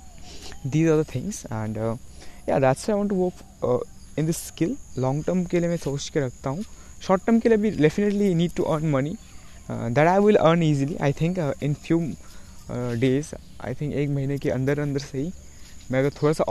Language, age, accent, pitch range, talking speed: Hindi, 20-39, native, 120-160 Hz, 200 wpm